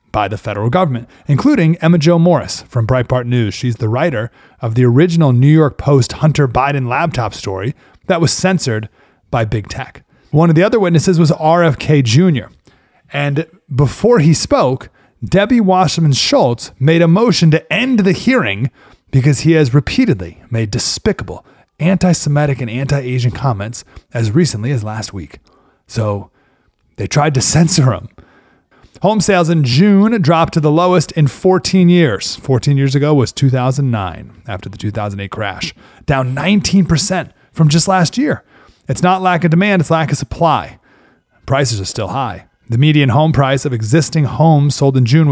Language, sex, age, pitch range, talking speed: English, male, 30-49, 115-165 Hz, 160 wpm